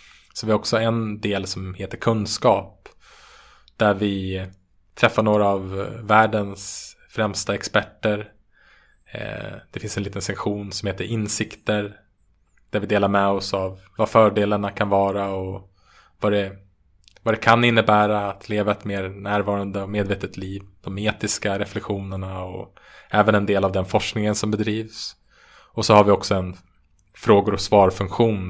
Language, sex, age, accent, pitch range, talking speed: Swedish, male, 20-39, Norwegian, 95-105 Hz, 145 wpm